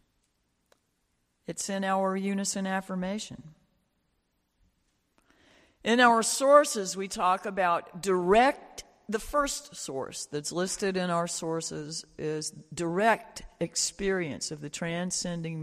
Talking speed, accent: 100 wpm, American